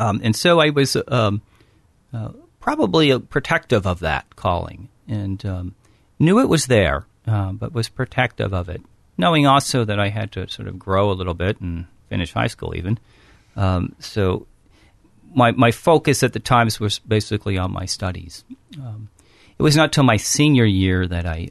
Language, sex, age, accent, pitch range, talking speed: English, male, 40-59, American, 95-120 Hz, 180 wpm